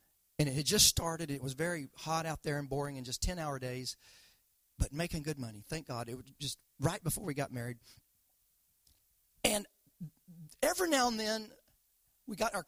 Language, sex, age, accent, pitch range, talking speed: English, male, 40-59, American, 140-200 Hz, 190 wpm